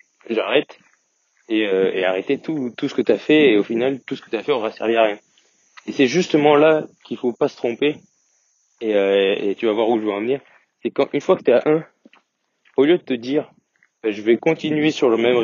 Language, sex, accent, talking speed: French, male, French, 250 wpm